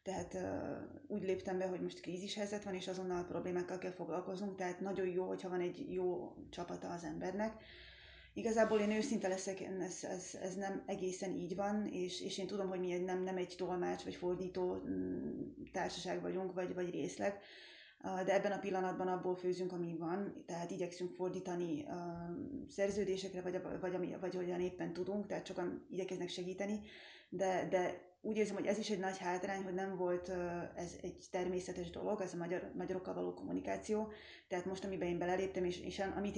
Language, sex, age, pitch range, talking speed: Slovak, female, 20-39, 180-195 Hz, 180 wpm